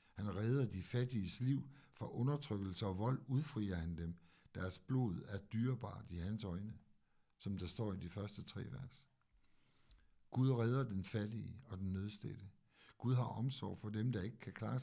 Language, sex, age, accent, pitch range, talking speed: Danish, male, 60-79, native, 95-125 Hz, 175 wpm